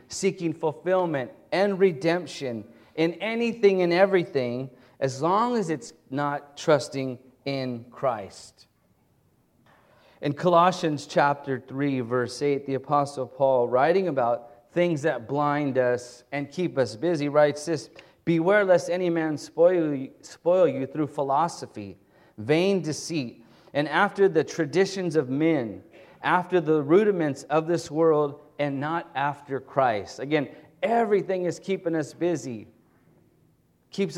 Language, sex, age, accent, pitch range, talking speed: English, male, 30-49, American, 135-170 Hz, 125 wpm